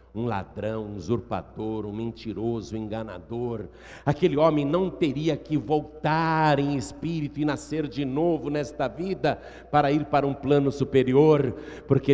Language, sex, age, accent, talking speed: Portuguese, male, 60-79, Brazilian, 145 wpm